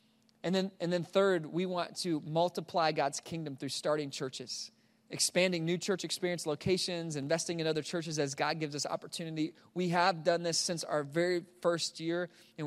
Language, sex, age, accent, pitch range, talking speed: English, male, 20-39, American, 145-175 Hz, 180 wpm